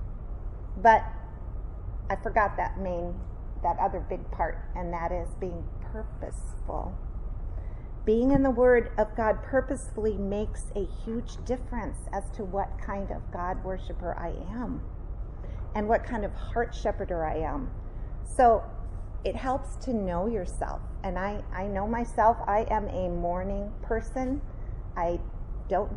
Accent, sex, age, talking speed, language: American, female, 40-59, 140 wpm, English